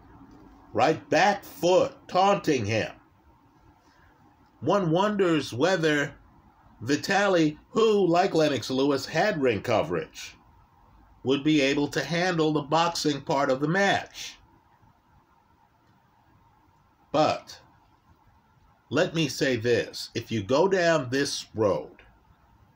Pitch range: 120-160 Hz